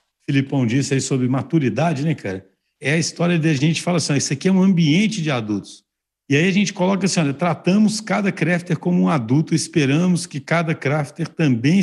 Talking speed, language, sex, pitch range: 200 wpm, Portuguese, male, 130-170 Hz